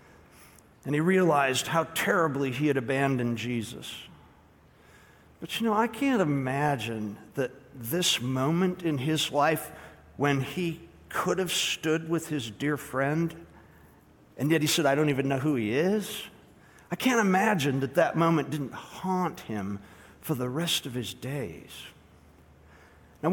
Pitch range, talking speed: 115-175 Hz, 145 wpm